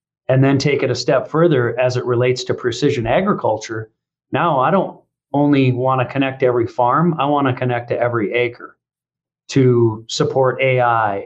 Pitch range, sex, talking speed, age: 120-140 Hz, male, 170 wpm, 40-59